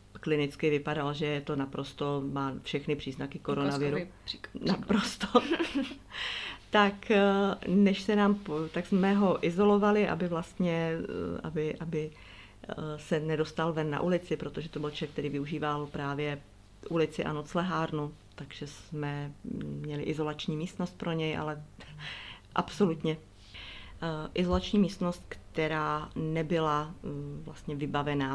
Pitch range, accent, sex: 140-160 Hz, native, female